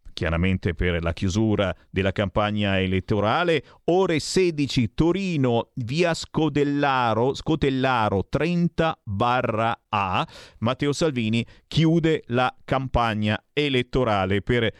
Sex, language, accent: male, Italian, native